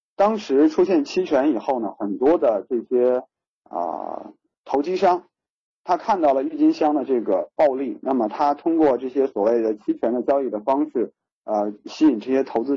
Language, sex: Chinese, male